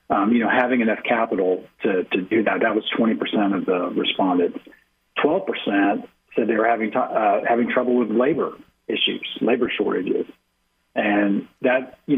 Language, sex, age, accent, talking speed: English, male, 40-59, American, 170 wpm